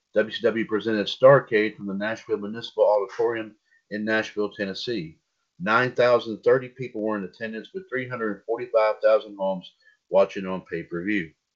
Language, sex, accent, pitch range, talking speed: English, male, American, 105-135 Hz, 115 wpm